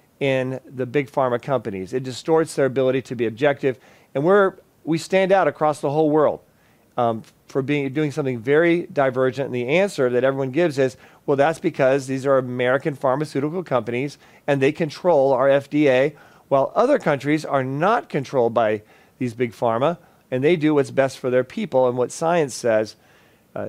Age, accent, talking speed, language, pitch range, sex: 40-59, American, 180 wpm, English, 125-150 Hz, male